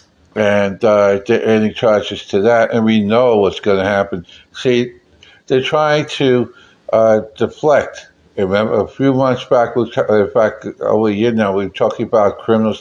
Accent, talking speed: American, 165 wpm